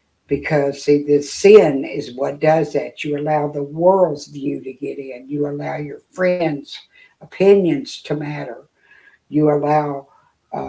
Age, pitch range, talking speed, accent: 60-79, 145-165 Hz, 145 wpm, American